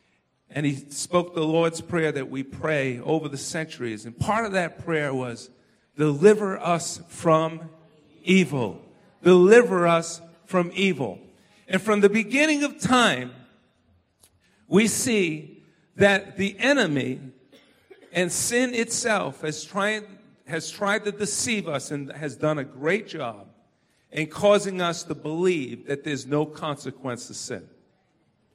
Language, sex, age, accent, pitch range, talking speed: English, male, 50-69, American, 150-205 Hz, 135 wpm